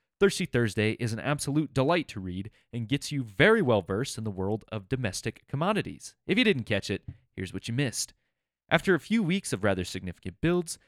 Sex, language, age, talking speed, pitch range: male, English, 30-49, 200 wpm, 100-160 Hz